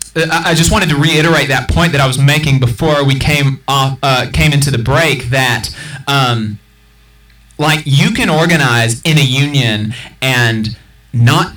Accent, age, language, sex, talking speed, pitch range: American, 30-49, English, male, 160 wpm, 120-155 Hz